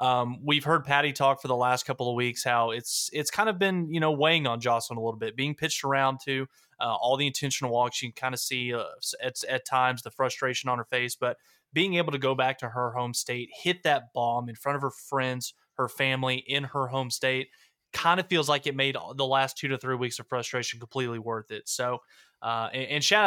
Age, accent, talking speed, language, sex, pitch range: 20-39, American, 240 wpm, English, male, 120-140 Hz